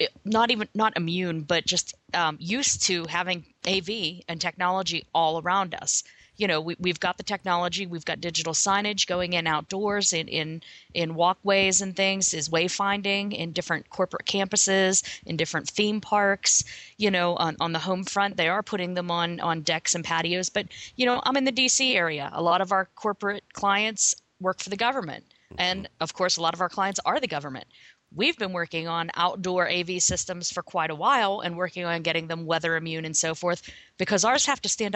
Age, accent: 40-59, American